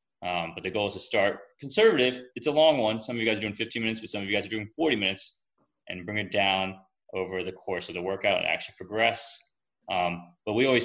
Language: English